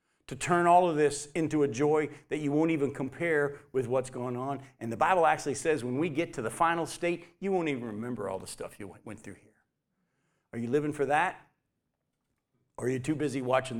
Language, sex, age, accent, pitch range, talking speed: English, male, 50-69, American, 130-170 Hz, 220 wpm